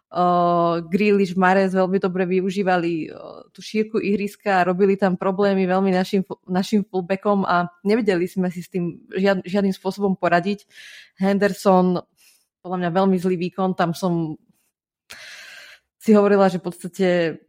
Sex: female